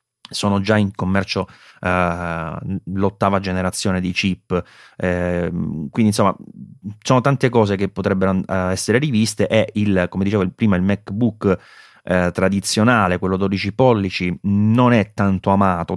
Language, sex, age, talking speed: Italian, male, 30-49, 115 wpm